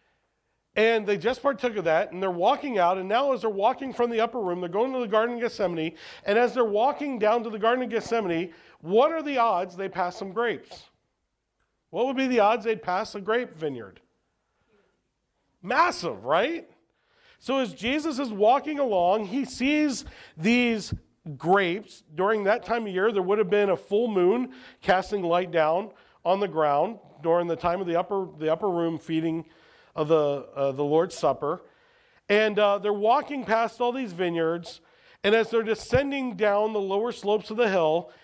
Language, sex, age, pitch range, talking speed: English, male, 40-59, 180-240 Hz, 185 wpm